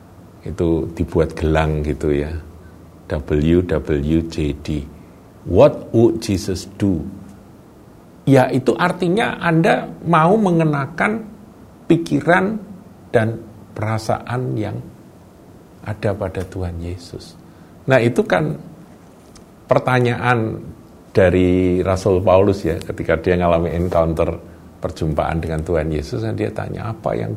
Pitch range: 90-130 Hz